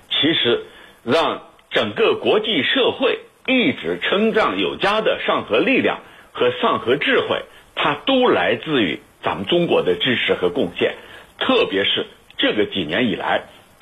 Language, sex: Chinese, male